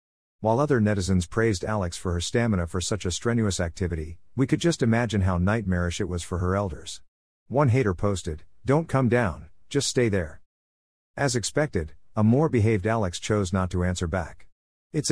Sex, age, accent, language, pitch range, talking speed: male, 50-69, American, English, 90-115 Hz, 180 wpm